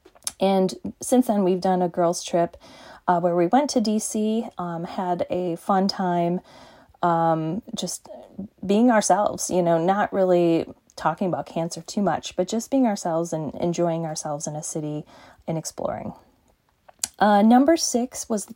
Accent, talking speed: American, 155 wpm